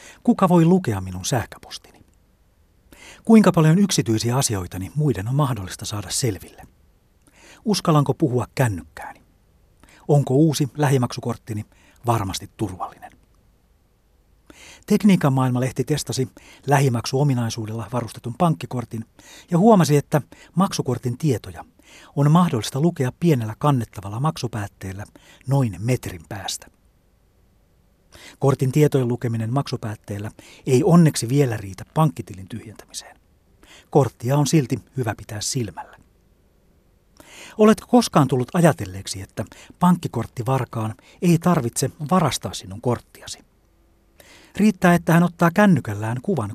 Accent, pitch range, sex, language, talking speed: native, 110-150 Hz, male, Finnish, 100 wpm